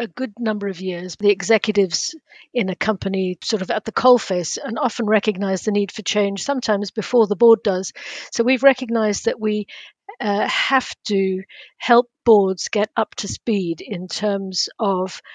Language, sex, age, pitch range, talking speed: English, female, 50-69, 195-230 Hz, 170 wpm